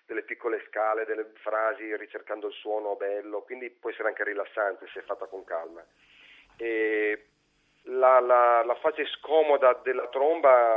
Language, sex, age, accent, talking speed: Italian, male, 40-59, native, 150 wpm